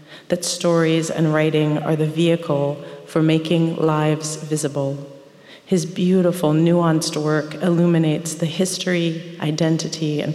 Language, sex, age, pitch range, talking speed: English, female, 40-59, 150-170 Hz, 115 wpm